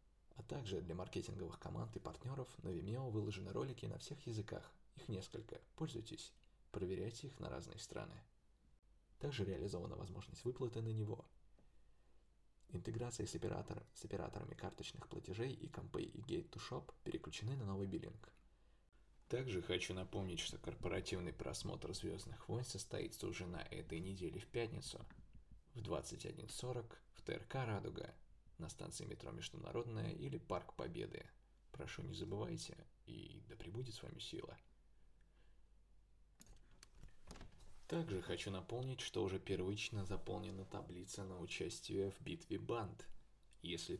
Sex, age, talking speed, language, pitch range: male, 20-39, 130 wpm, Russian, 95-125 Hz